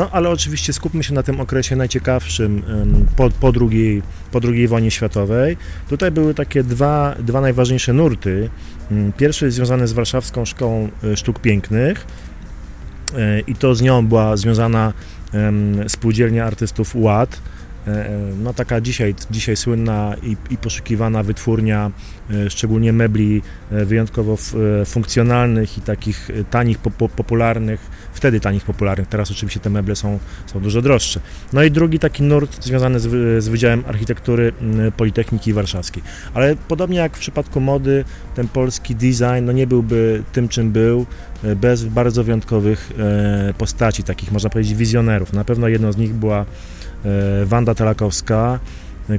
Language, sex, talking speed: Polish, male, 140 wpm